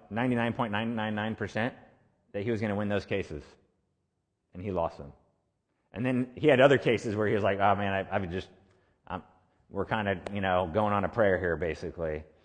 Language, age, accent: English, 30-49, American